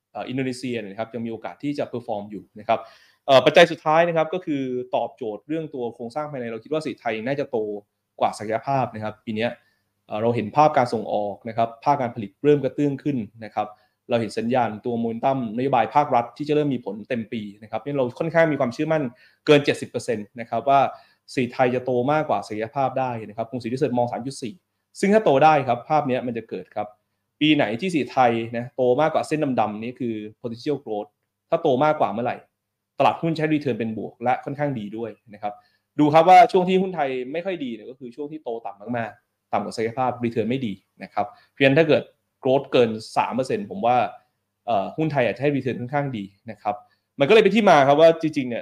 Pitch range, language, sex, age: 110-150 Hz, Thai, male, 20-39